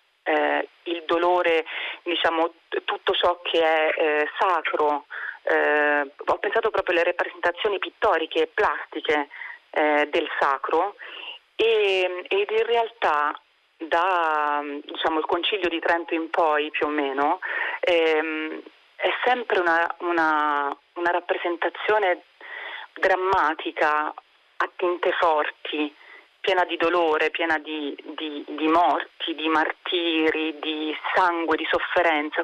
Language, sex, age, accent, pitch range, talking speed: Italian, female, 40-59, native, 155-185 Hz, 115 wpm